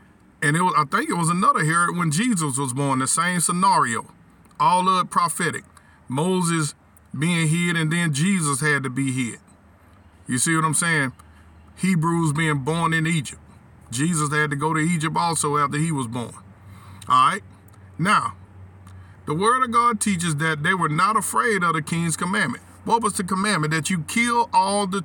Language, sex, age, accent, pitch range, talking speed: English, male, 50-69, American, 140-190 Hz, 185 wpm